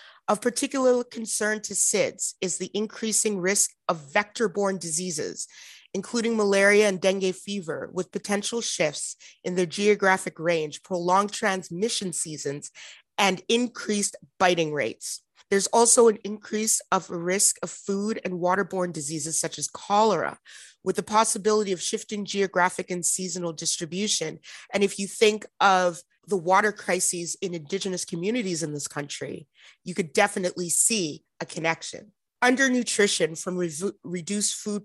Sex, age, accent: female, 30-49, American